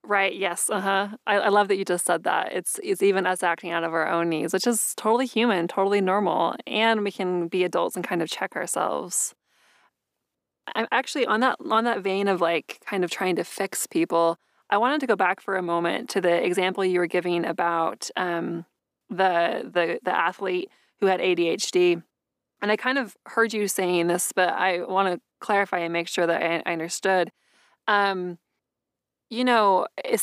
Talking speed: 200 wpm